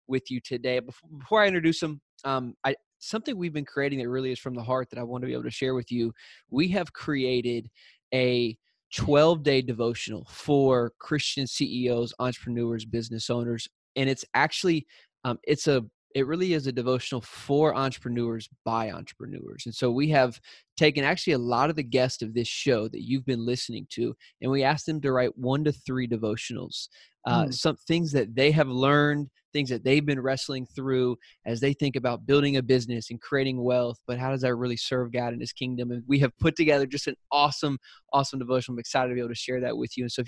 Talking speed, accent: 210 wpm, American